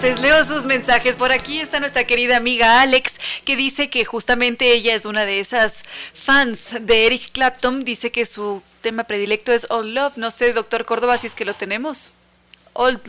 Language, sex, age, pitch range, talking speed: Spanish, female, 20-39, 215-250 Hz, 195 wpm